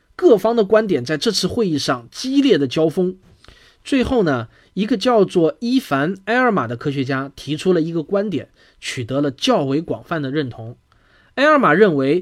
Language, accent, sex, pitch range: Chinese, native, male, 145-220 Hz